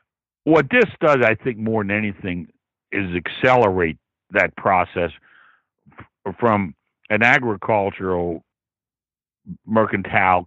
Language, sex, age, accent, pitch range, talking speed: English, male, 60-79, American, 90-110 Hz, 95 wpm